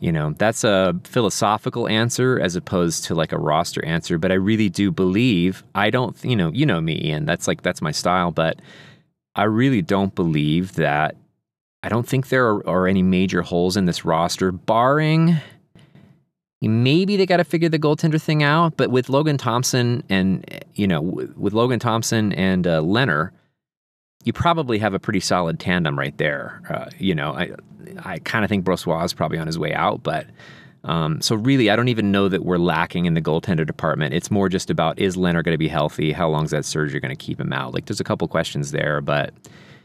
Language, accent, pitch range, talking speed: English, American, 85-125 Hz, 210 wpm